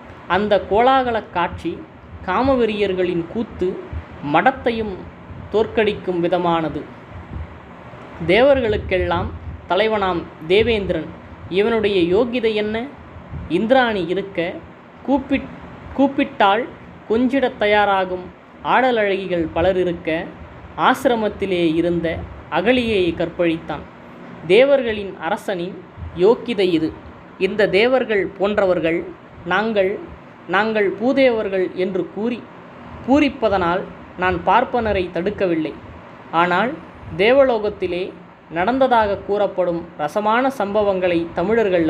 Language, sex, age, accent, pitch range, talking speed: Tamil, female, 20-39, native, 175-225 Hz, 70 wpm